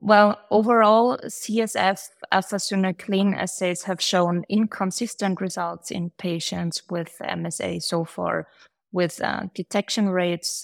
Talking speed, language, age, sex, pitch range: 105 wpm, English, 20-39, female, 175-205 Hz